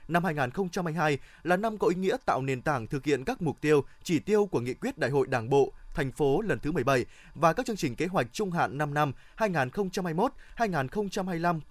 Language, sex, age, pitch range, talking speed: Vietnamese, male, 20-39, 140-190 Hz, 205 wpm